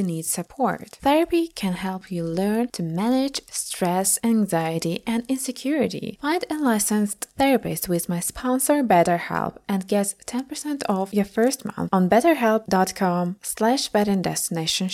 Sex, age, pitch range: female, 20-39, 180-245 Hz